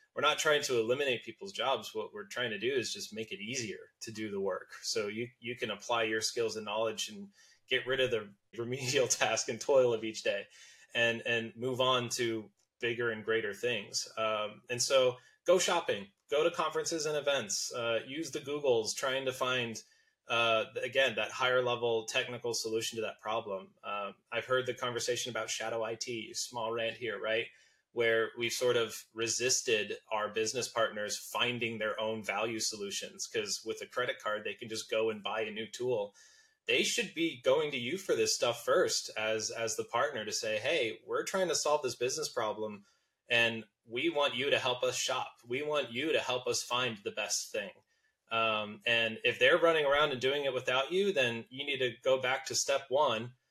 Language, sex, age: English, male, 20-39